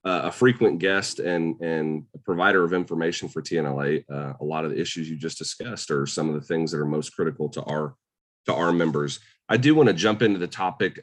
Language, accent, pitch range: English, American, 80-100 Hz